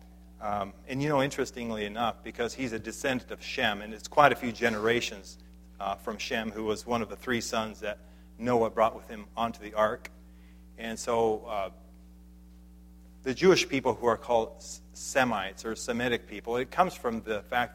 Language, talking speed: English, 190 wpm